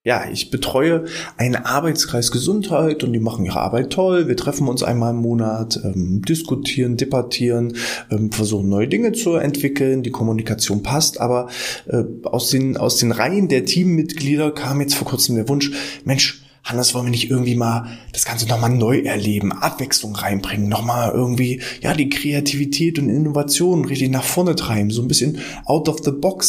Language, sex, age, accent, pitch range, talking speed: German, male, 20-39, German, 115-150 Hz, 175 wpm